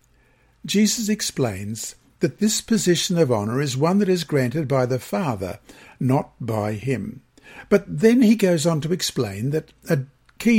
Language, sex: English, male